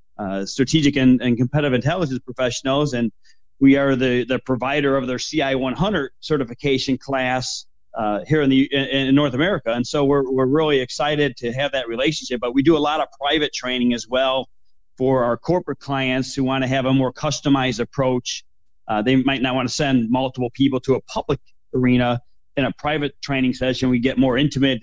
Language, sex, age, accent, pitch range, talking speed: English, male, 40-59, American, 120-140 Hz, 190 wpm